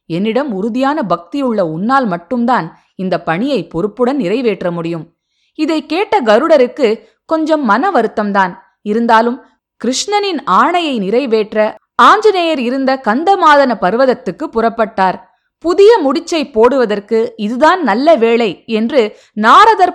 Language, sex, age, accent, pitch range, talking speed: Tamil, female, 20-39, native, 195-275 Hz, 100 wpm